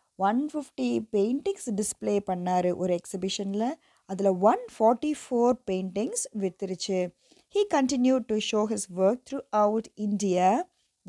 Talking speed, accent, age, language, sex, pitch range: 125 wpm, native, 20-39, Tamil, female, 190-235 Hz